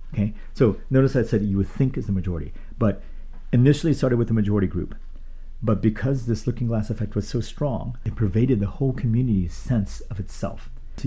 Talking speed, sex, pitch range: 200 wpm, male, 95-120 Hz